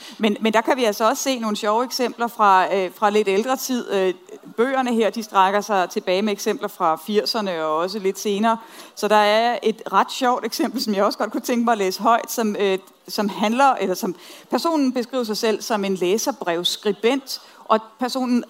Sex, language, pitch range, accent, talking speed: female, Danish, 200-265 Hz, native, 210 wpm